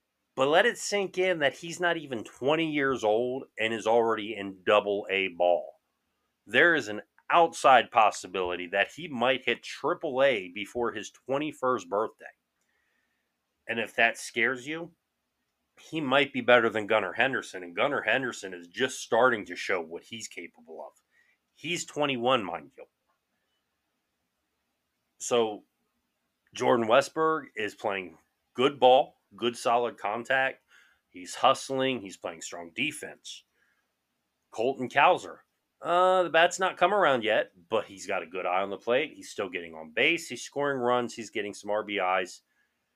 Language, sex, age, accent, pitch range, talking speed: English, male, 30-49, American, 100-145 Hz, 150 wpm